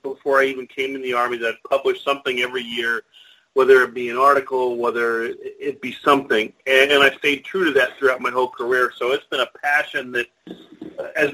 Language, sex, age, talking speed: English, male, 40-59, 210 wpm